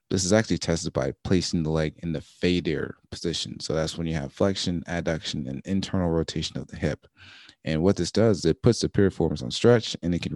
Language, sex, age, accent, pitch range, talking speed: English, male, 30-49, American, 80-90 Hz, 225 wpm